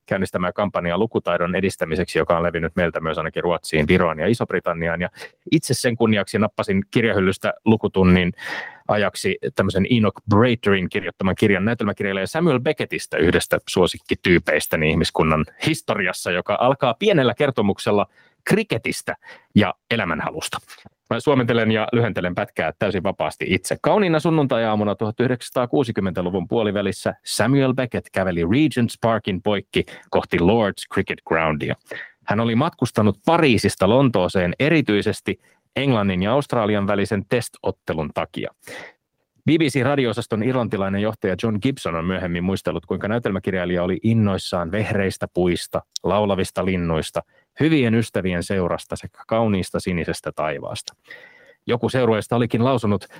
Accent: native